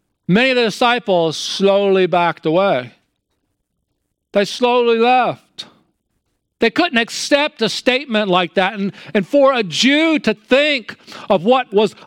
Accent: American